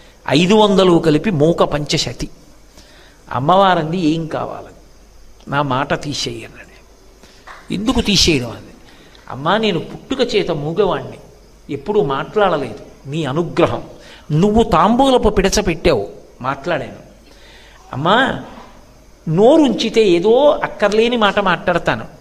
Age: 50-69